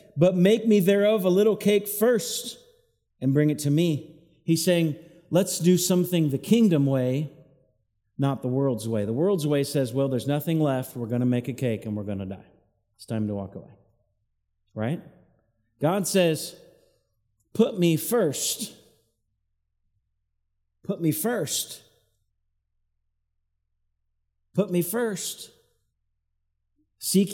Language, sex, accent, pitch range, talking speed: English, male, American, 110-185 Hz, 135 wpm